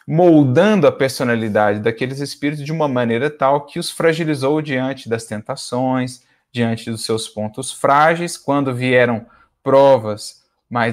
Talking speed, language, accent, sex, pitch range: 130 wpm, Portuguese, Brazilian, male, 110-135 Hz